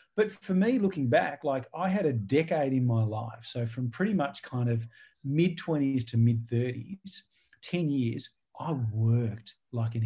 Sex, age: male, 40-59